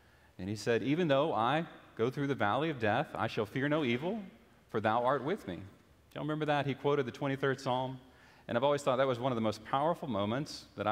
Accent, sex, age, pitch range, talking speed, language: American, male, 40-59, 115-155 Hz, 240 wpm, English